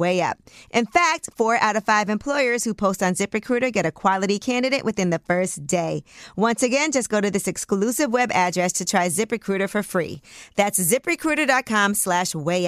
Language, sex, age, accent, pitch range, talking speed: English, female, 40-59, American, 190-260 Hz, 185 wpm